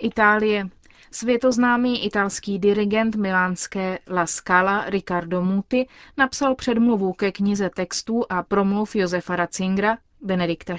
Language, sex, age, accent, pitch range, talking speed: Czech, female, 30-49, native, 190-230 Hz, 105 wpm